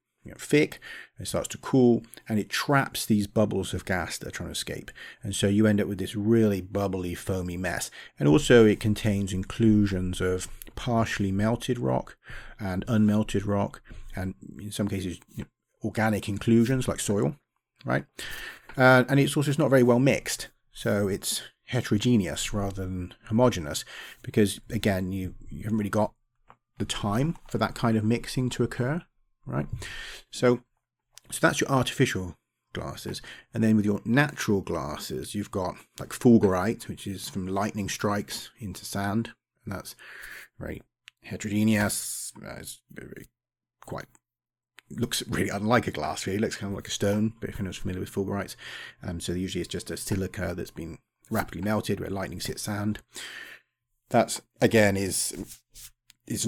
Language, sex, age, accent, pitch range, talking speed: English, male, 30-49, British, 95-115 Hz, 165 wpm